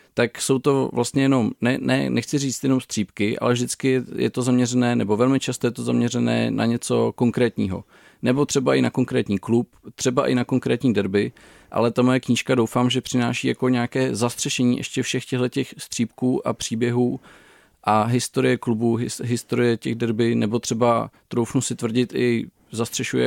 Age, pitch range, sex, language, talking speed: 40-59, 110-125 Hz, male, Czech, 170 wpm